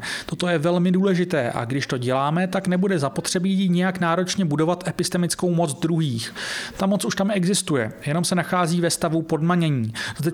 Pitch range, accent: 150-185 Hz, native